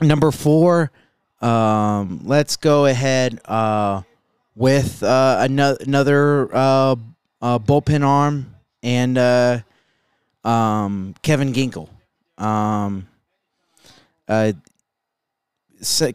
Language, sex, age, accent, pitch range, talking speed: English, male, 20-39, American, 110-135 Hz, 85 wpm